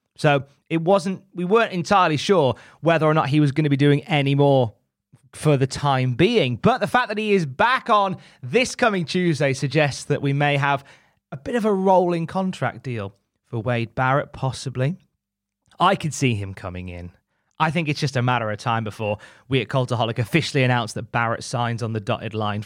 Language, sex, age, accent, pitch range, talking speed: English, male, 20-39, British, 120-160 Hz, 200 wpm